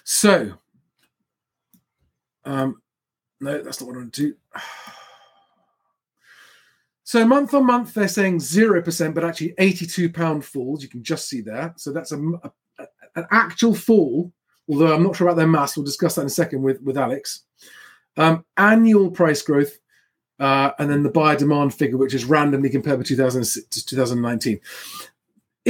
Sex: male